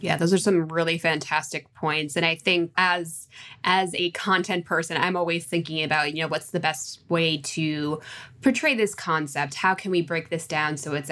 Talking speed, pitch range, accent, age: 200 wpm, 155-185 Hz, American, 20-39